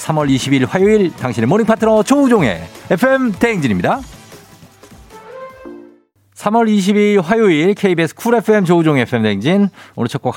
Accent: native